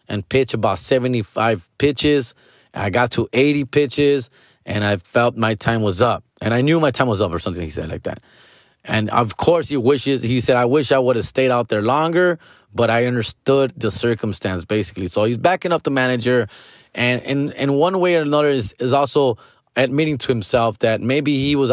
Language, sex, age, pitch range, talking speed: English, male, 20-39, 115-145 Hz, 205 wpm